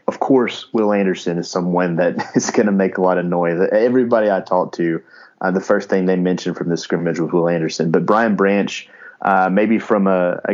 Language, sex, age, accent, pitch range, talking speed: English, male, 30-49, American, 90-100 Hz, 220 wpm